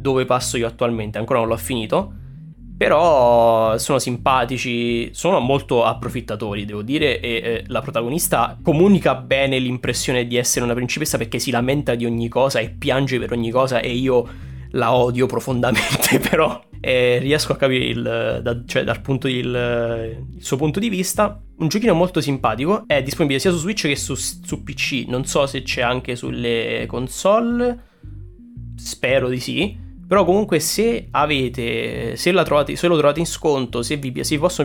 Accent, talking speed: native, 165 wpm